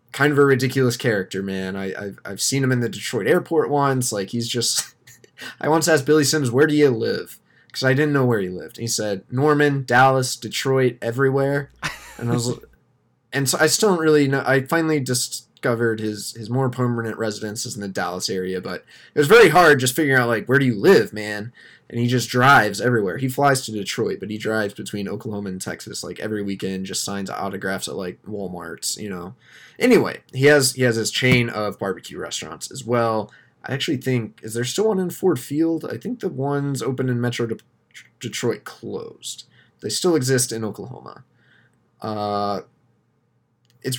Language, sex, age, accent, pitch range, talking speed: English, male, 20-39, American, 105-130 Hz, 200 wpm